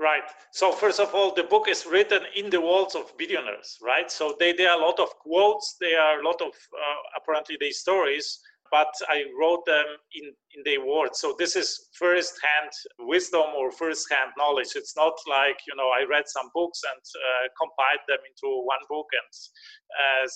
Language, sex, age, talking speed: English, male, 30-49, 200 wpm